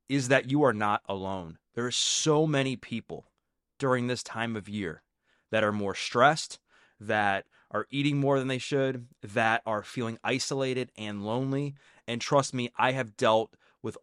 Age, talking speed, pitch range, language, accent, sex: 20-39, 170 wpm, 110-135 Hz, English, American, male